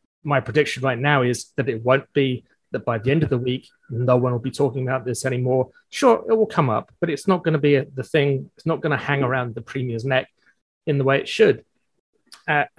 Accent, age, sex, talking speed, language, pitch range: British, 30-49, male, 245 wpm, English, 125-165 Hz